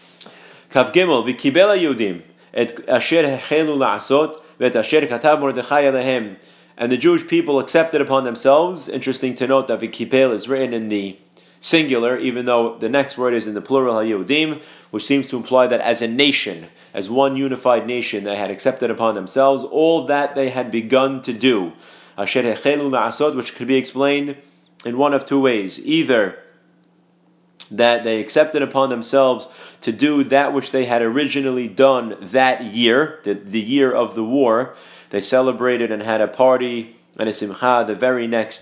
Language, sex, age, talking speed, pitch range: English, male, 30-49, 145 wpm, 120-145 Hz